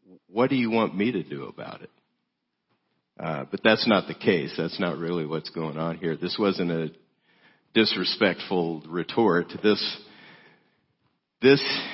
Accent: American